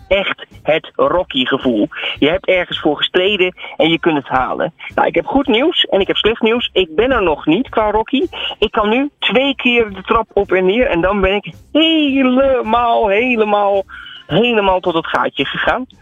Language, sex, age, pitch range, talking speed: Dutch, male, 40-59, 165-235 Hz, 195 wpm